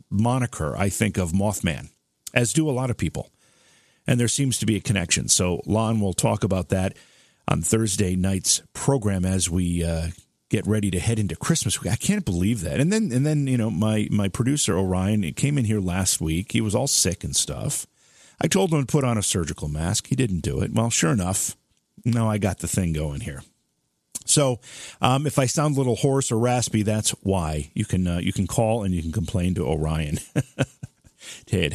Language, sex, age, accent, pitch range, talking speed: English, male, 40-59, American, 95-135 Hz, 210 wpm